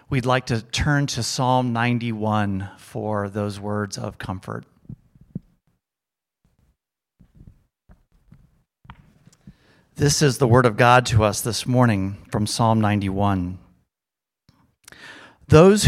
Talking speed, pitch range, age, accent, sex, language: 100 wpm, 115-165 Hz, 40-59, American, male, English